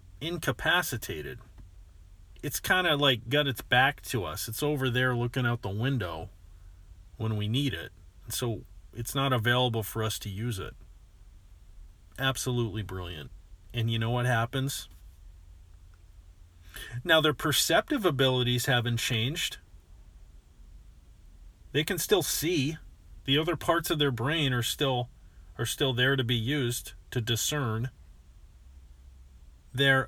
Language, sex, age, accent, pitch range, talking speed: English, male, 40-59, American, 90-130 Hz, 130 wpm